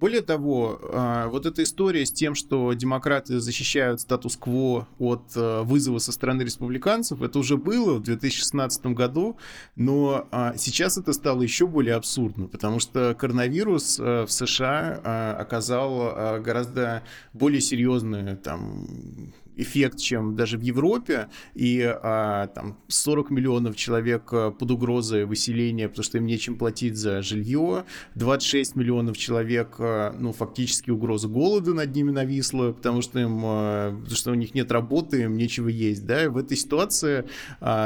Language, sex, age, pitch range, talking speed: Russian, male, 20-39, 115-145 Hz, 140 wpm